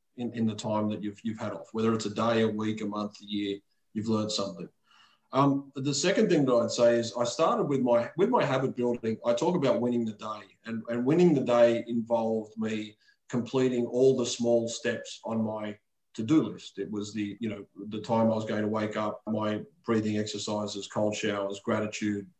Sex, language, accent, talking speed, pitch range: male, English, Australian, 210 wpm, 110-125 Hz